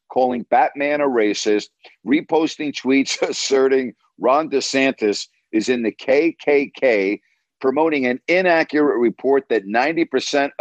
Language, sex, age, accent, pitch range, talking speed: English, male, 50-69, American, 110-145 Hz, 105 wpm